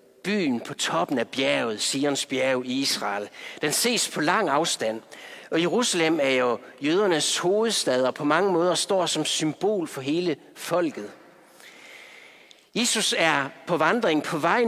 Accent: native